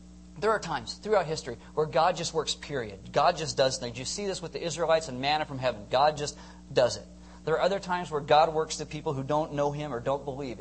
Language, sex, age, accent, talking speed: English, male, 40-59, American, 250 wpm